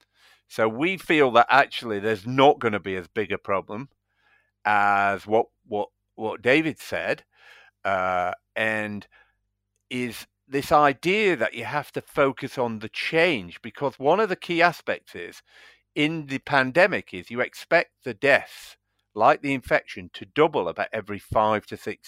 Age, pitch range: 50-69, 100-140 Hz